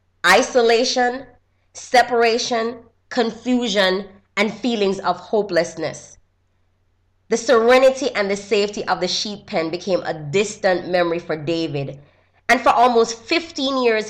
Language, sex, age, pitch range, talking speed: English, female, 20-39, 150-230 Hz, 115 wpm